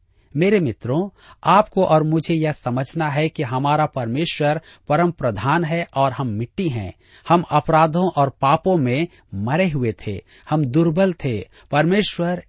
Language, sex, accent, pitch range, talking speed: Hindi, male, native, 120-170 Hz, 145 wpm